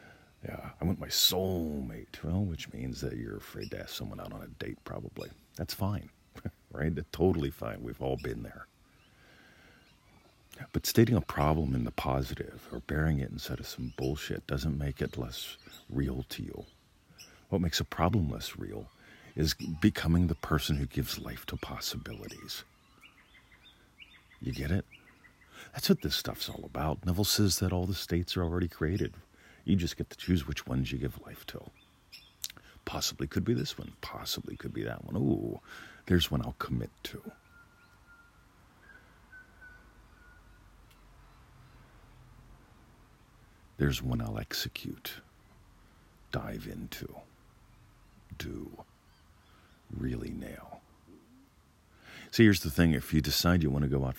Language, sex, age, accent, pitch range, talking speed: English, male, 50-69, American, 70-95 Hz, 145 wpm